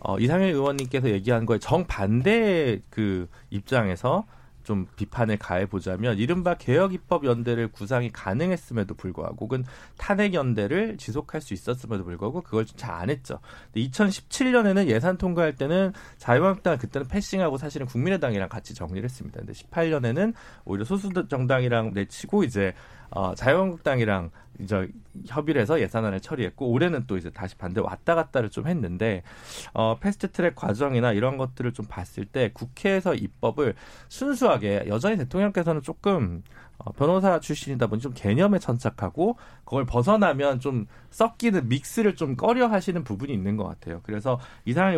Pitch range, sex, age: 110-175 Hz, male, 40-59